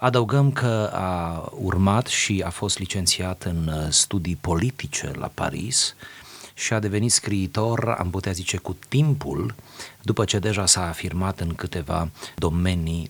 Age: 30-49